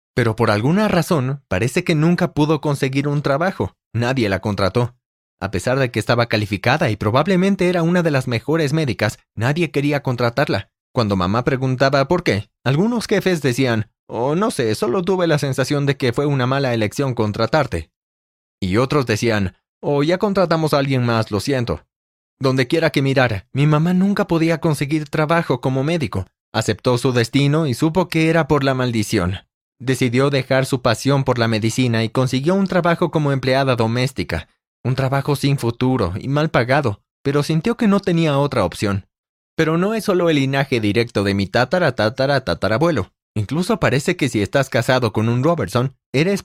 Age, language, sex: 30-49, Spanish, male